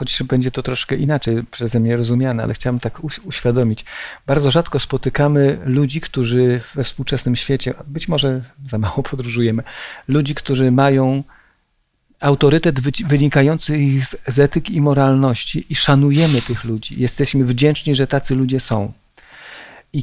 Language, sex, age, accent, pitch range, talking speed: Polish, male, 40-59, native, 135-170 Hz, 135 wpm